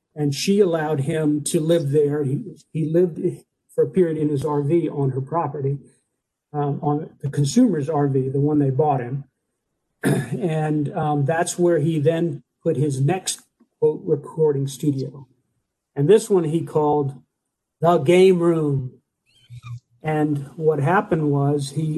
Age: 50-69